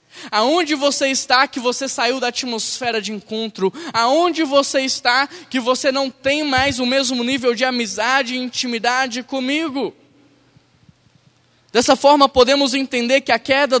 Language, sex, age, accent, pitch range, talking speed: Portuguese, male, 10-29, Brazilian, 195-270 Hz, 145 wpm